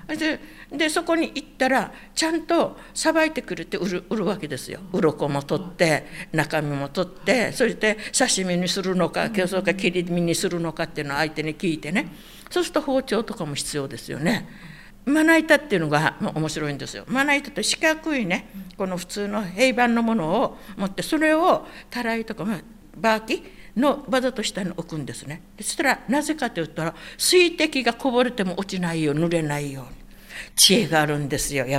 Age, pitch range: 60-79, 160-255 Hz